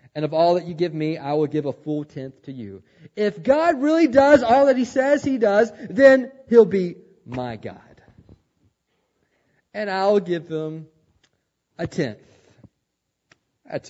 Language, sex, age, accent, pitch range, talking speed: English, male, 40-59, American, 110-180 Hz, 160 wpm